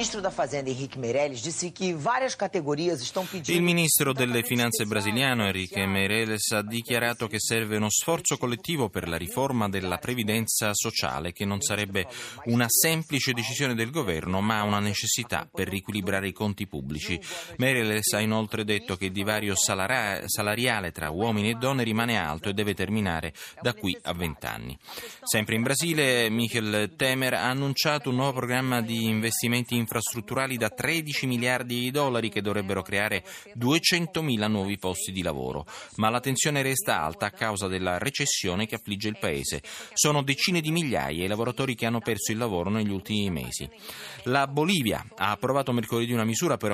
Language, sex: Italian, male